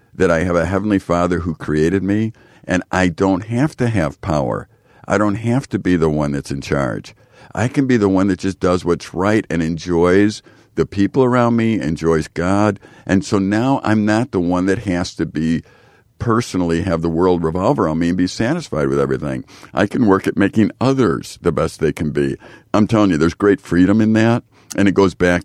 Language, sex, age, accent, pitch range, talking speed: English, male, 50-69, American, 80-105 Hz, 210 wpm